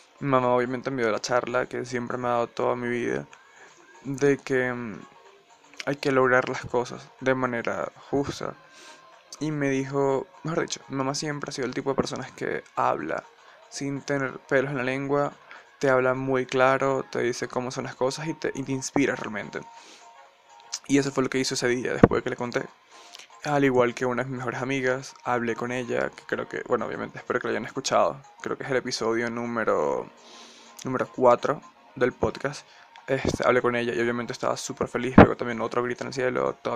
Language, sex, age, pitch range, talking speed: Spanish, male, 20-39, 125-135 Hz, 200 wpm